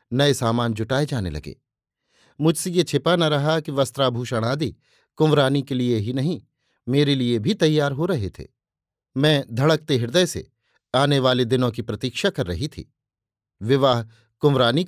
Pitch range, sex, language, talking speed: 115-155 Hz, male, Hindi, 155 wpm